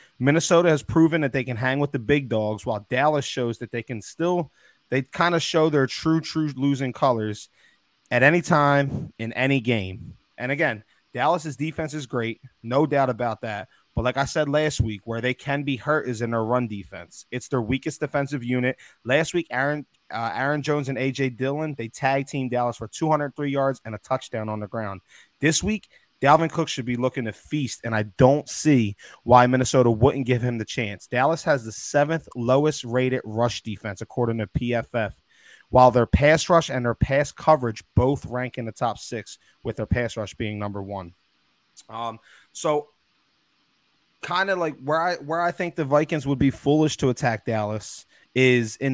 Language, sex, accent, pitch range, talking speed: English, male, American, 115-145 Hz, 190 wpm